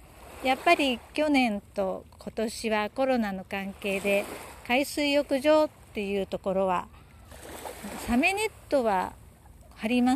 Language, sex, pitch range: Japanese, female, 205-275 Hz